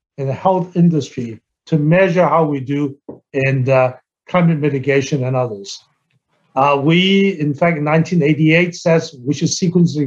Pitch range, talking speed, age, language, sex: 140-180 Hz, 150 wpm, 60-79, English, male